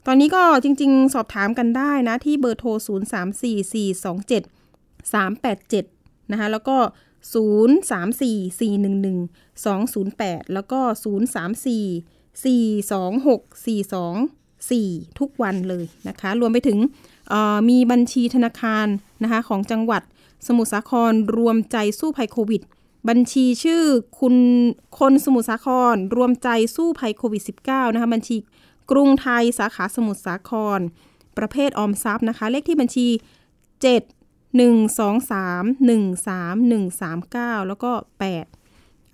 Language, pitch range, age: Thai, 200-245 Hz, 20-39